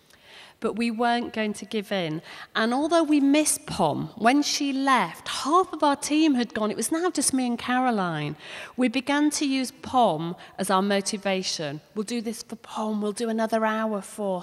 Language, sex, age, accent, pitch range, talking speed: English, female, 40-59, British, 195-255 Hz, 190 wpm